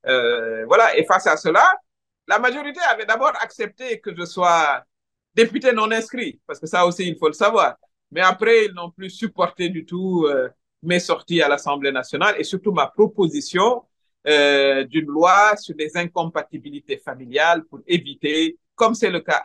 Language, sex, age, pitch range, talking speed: French, male, 50-69, 155-235 Hz, 175 wpm